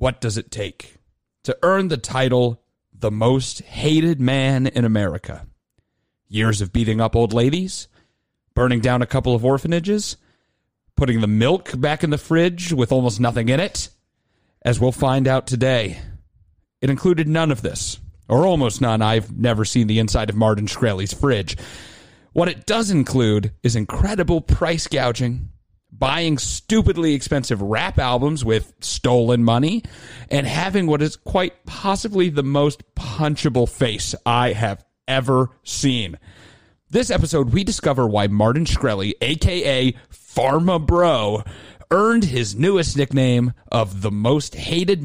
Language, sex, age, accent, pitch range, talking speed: English, male, 30-49, American, 110-150 Hz, 145 wpm